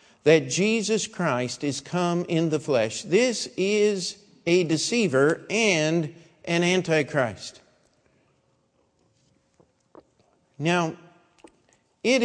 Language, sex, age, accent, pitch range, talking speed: English, male, 50-69, American, 135-190 Hz, 85 wpm